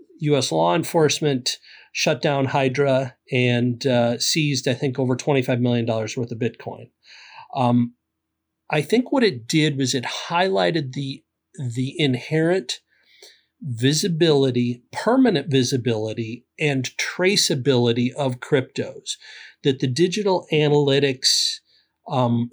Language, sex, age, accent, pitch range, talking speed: English, male, 40-59, American, 125-160 Hz, 110 wpm